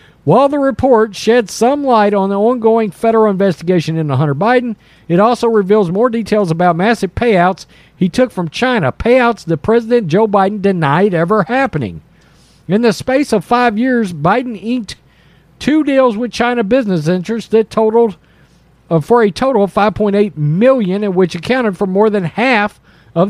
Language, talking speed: English, 165 wpm